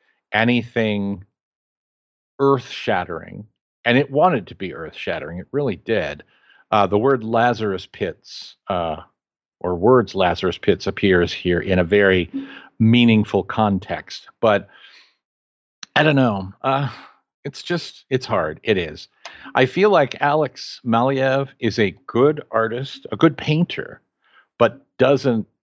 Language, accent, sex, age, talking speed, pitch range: English, American, male, 50-69, 130 wpm, 100-130 Hz